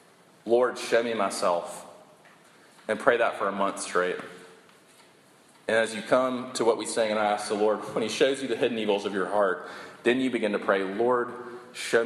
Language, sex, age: English, male, 30-49